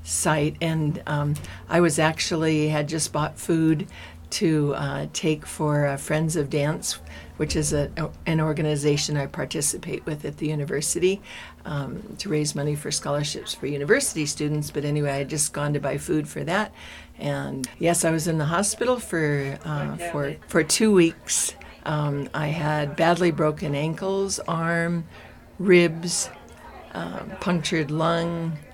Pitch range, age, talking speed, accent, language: 145-165 Hz, 60-79, 150 wpm, American, English